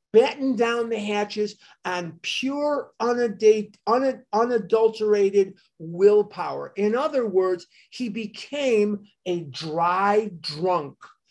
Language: English